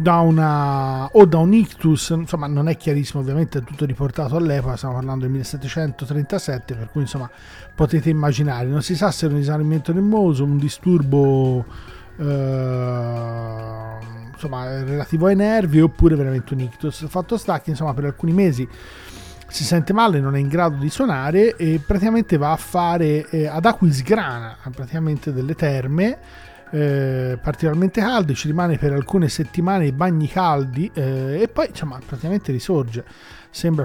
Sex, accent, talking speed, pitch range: male, native, 155 wpm, 135-180 Hz